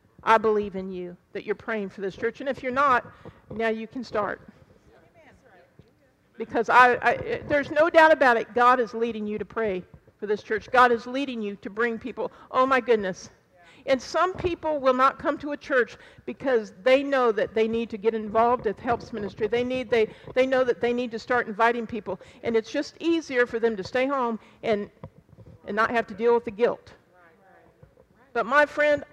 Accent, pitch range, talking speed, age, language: American, 220-285 Hz, 205 wpm, 50-69, English